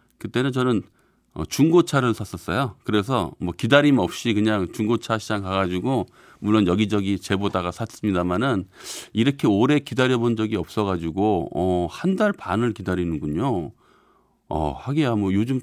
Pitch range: 95-125 Hz